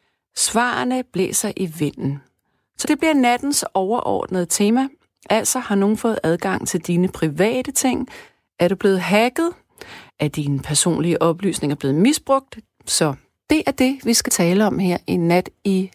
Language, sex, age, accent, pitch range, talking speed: Danish, female, 40-59, native, 165-245 Hz, 155 wpm